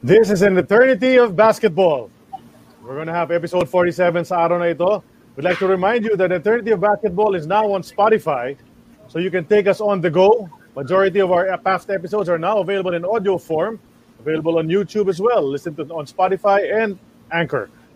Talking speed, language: 190 wpm, English